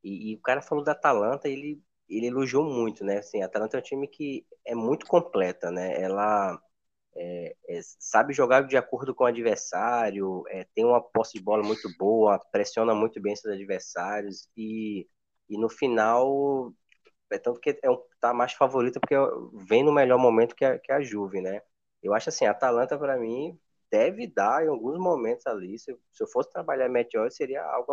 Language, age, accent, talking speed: Portuguese, 20-39, Brazilian, 195 wpm